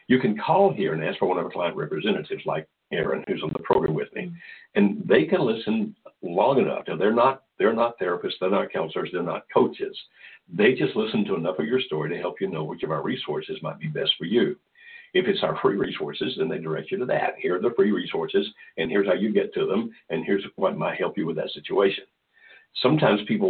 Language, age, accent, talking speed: English, 60-79, American, 240 wpm